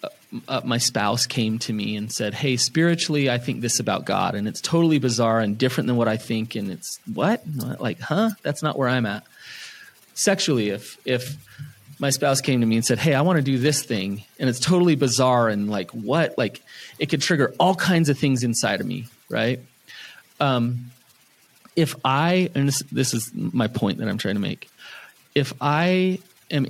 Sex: male